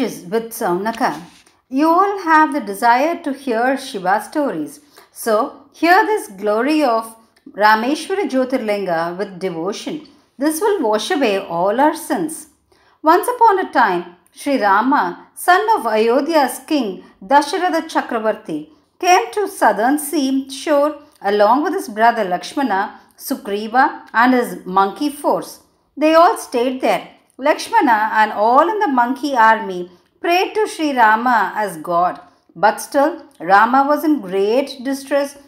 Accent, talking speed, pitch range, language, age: native, 130 wpm, 220-310 Hz, Tamil, 50-69